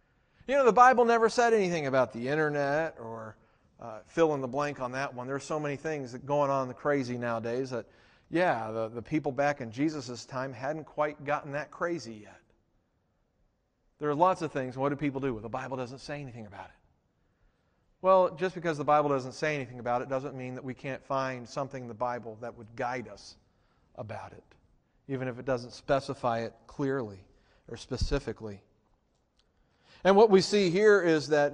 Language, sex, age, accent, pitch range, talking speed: English, male, 40-59, American, 130-185 Hz, 195 wpm